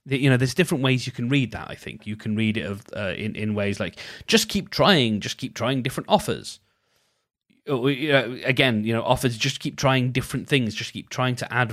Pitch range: 110-140 Hz